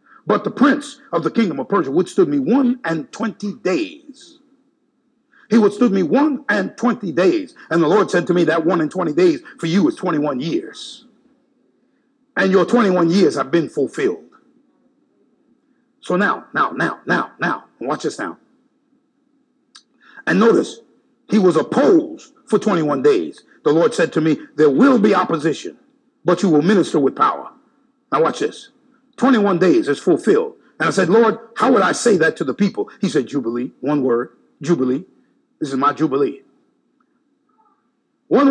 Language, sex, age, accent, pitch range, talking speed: English, male, 50-69, American, 195-280 Hz, 170 wpm